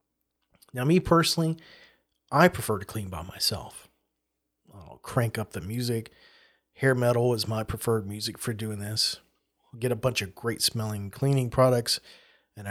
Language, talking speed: English, 155 wpm